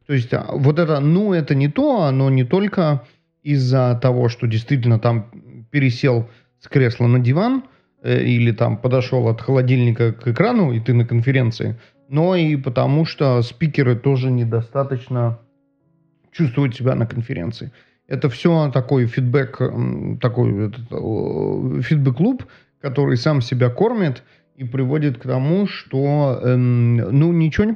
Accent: native